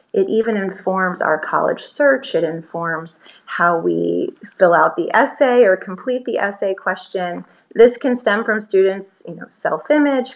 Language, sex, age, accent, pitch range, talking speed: English, female, 30-49, American, 180-235 Hz, 155 wpm